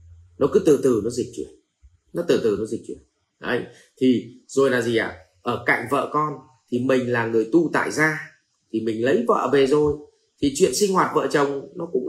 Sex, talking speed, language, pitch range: male, 225 wpm, Vietnamese, 105-180 Hz